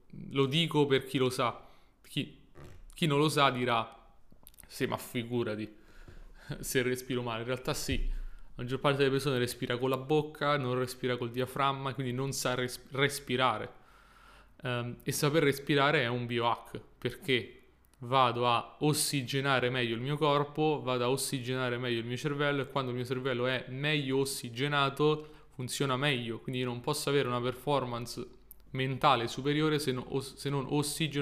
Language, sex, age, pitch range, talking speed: Italian, male, 20-39, 125-145 Hz, 160 wpm